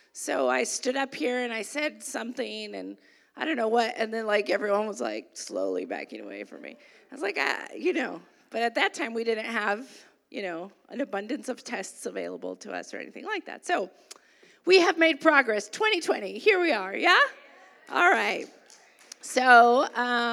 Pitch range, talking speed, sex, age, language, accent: 245-370 Hz, 190 wpm, female, 30-49, English, American